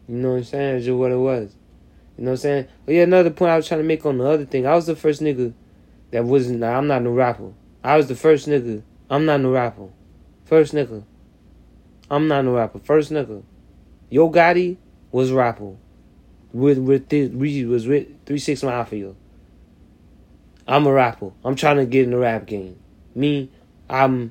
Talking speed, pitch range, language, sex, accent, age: 200 wpm, 105-140 Hz, English, male, American, 20-39